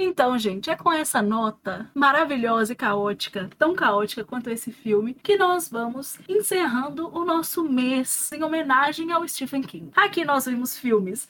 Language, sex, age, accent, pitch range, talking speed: Portuguese, female, 20-39, Brazilian, 230-330 Hz, 160 wpm